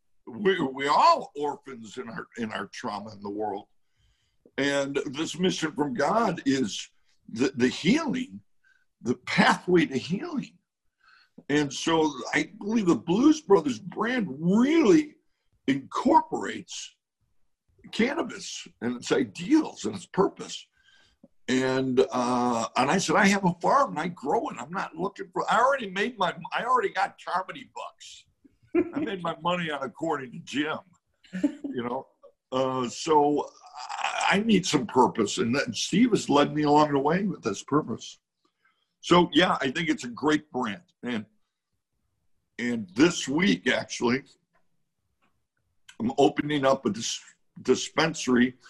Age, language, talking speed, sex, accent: 60-79, English, 145 wpm, male, American